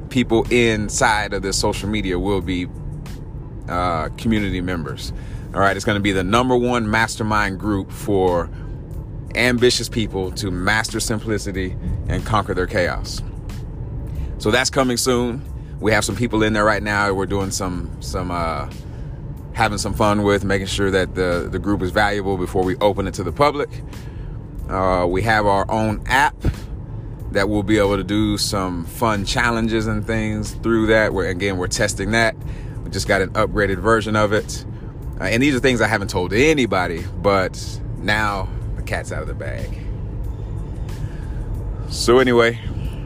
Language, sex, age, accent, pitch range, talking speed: English, male, 30-49, American, 95-115 Hz, 165 wpm